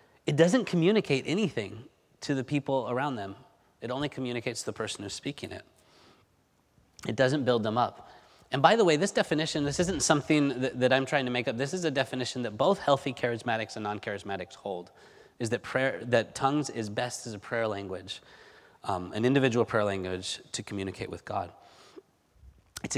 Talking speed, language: 185 wpm, English